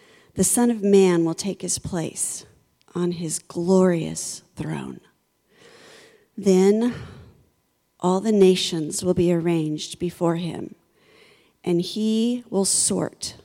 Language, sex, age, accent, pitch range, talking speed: English, female, 40-59, American, 170-195 Hz, 110 wpm